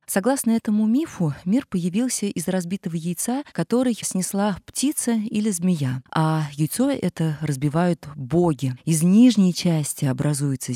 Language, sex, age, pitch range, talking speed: Russian, female, 20-39, 150-195 Hz, 125 wpm